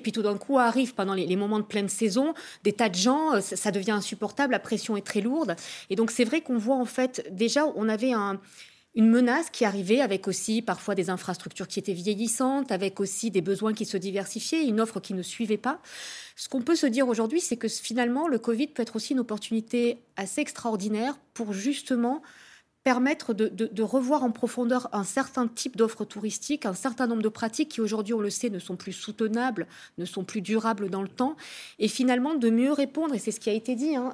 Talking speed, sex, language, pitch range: 225 wpm, female, French, 205-255 Hz